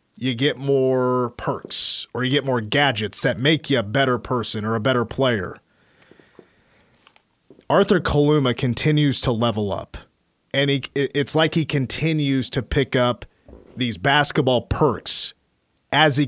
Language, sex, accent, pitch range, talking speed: English, male, American, 120-145 Hz, 145 wpm